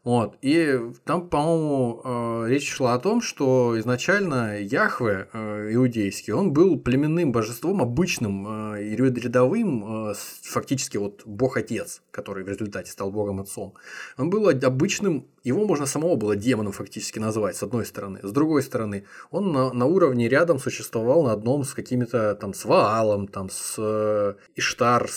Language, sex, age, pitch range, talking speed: Russian, male, 20-39, 105-130 Hz, 155 wpm